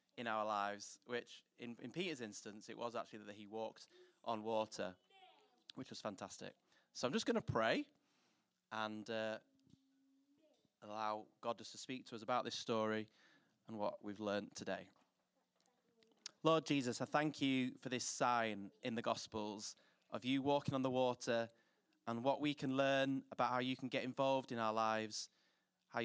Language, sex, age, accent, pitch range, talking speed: English, male, 20-39, British, 110-130 Hz, 170 wpm